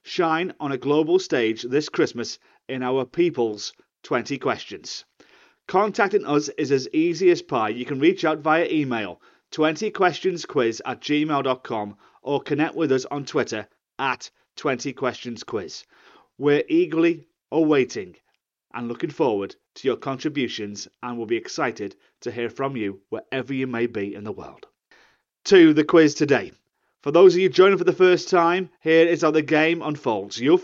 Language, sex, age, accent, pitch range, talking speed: English, male, 30-49, British, 125-170 Hz, 155 wpm